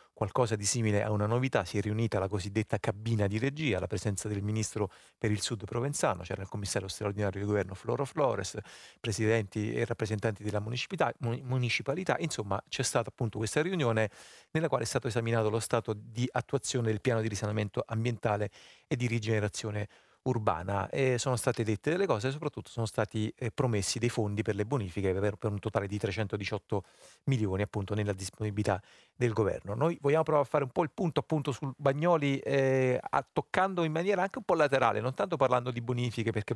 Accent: native